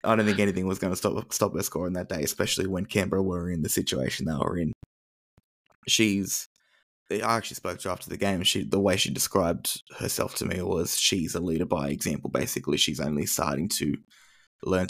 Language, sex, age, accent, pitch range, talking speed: English, male, 20-39, Australian, 90-100 Hz, 210 wpm